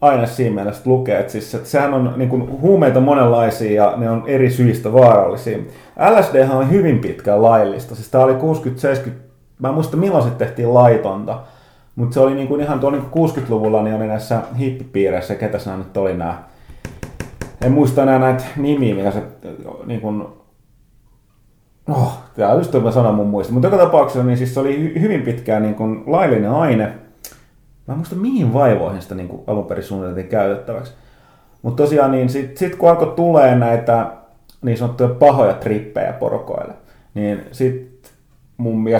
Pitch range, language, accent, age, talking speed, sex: 105-130 Hz, Finnish, native, 30-49, 165 wpm, male